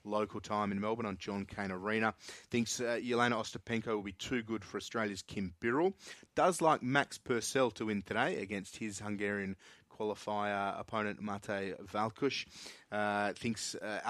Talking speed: 155 wpm